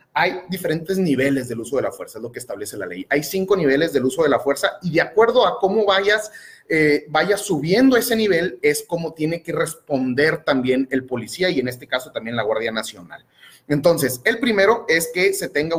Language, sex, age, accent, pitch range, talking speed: Spanish, male, 30-49, Mexican, 135-195 Hz, 215 wpm